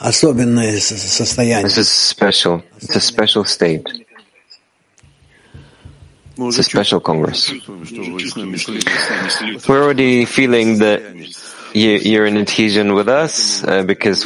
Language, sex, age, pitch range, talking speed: English, male, 30-49, 95-110 Hz, 90 wpm